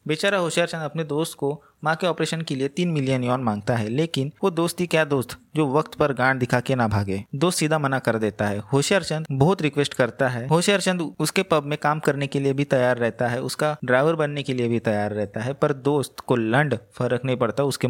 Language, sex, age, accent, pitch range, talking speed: Hindi, male, 20-39, native, 125-160 Hz, 210 wpm